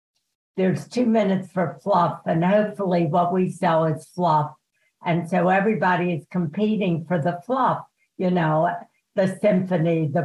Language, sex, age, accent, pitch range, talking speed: English, female, 60-79, American, 165-190 Hz, 145 wpm